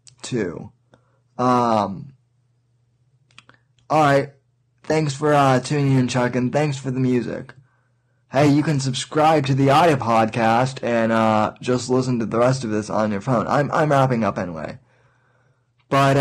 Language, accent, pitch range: English, American, 120-135 Hz